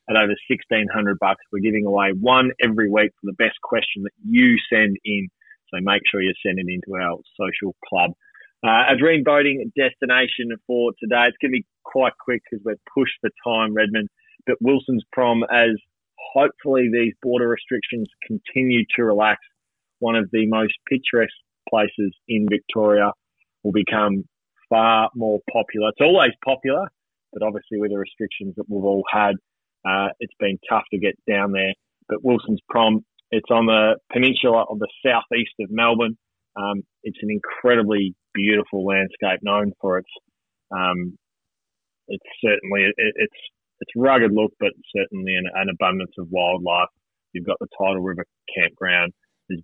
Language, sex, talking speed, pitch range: English, male, 160 wpm, 95-120 Hz